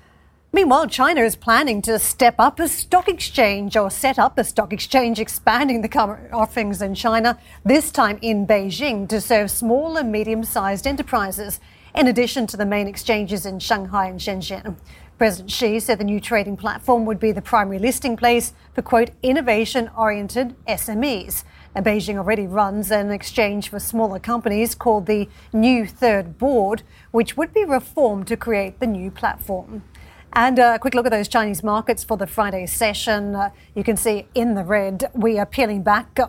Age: 40-59